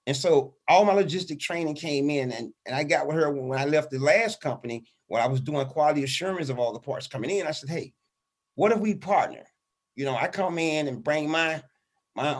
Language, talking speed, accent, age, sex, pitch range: English, 230 wpm, American, 30-49, male, 135-160 Hz